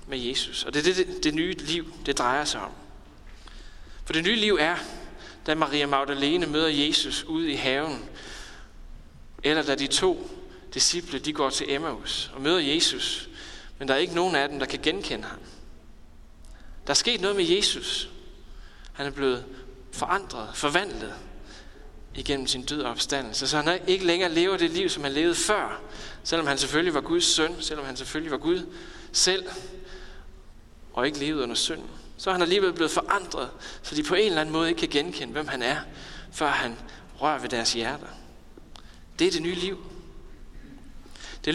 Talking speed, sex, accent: 185 wpm, male, native